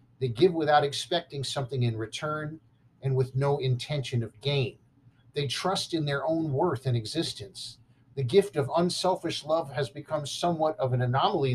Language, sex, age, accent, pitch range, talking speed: English, male, 50-69, American, 125-155 Hz, 165 wpm